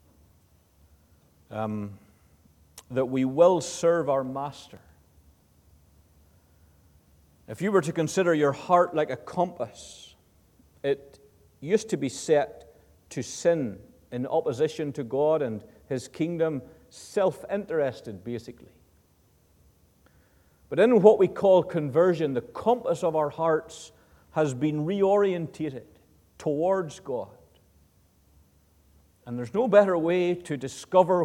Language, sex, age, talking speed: English, male, 50-69, 110 wpm